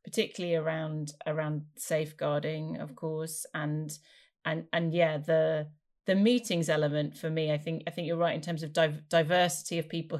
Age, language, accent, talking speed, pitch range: 30-49, English, British, 165 wpm, 160-170 Hz